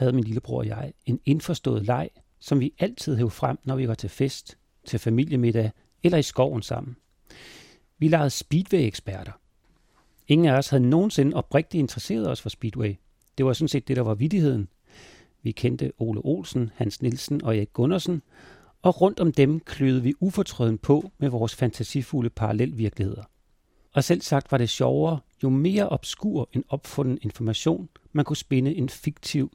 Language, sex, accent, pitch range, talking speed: Danish, male, native, 115-150 Hz, 170 wpm